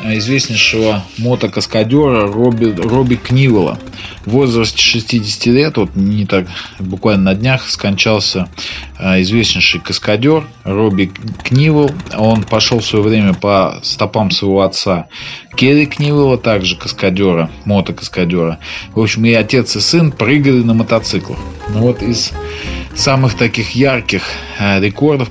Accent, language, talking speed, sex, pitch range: native, Russian, 115 wpm, male, 100-120 Hz